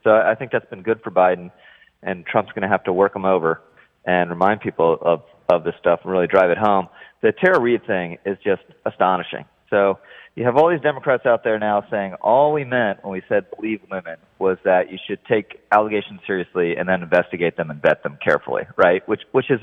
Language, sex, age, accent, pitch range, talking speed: English, male, 30-49, American, 95-115 Hz, 225 wpm